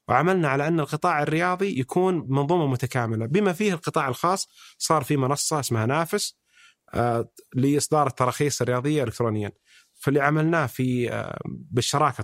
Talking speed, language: 130 wpm, Arabic